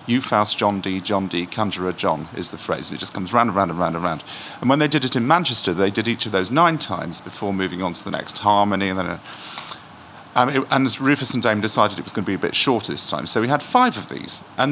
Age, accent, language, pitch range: 40-59, British, English, 105-135 Hz